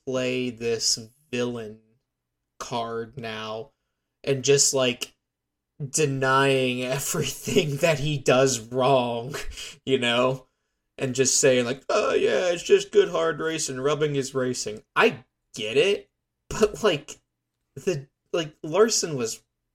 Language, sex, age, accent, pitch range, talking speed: English, male, 20-39, American, 120-175 Hz, 120 wpm